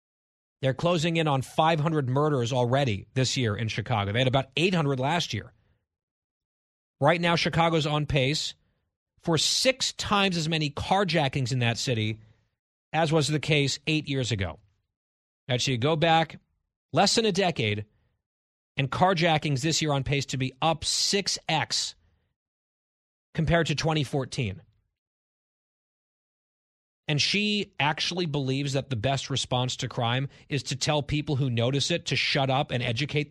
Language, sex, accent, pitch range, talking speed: English, male, American, 115-170 Hz, 145 wpm